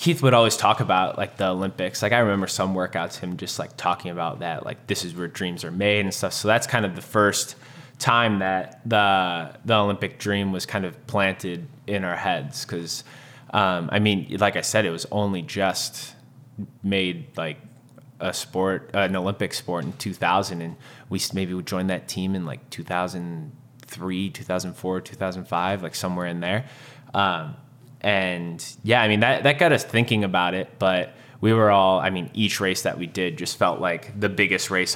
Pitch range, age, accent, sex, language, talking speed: 90-110 Hz, 20-39, American, male, English, 195 wpm